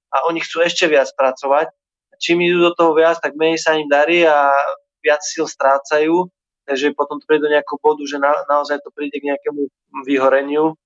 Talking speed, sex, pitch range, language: 195 wpm, male, 130-145 Hz, Slovak